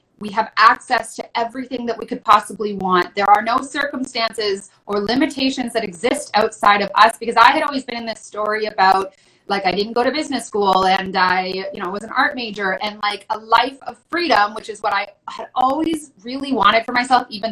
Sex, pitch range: female, 200-245 Hz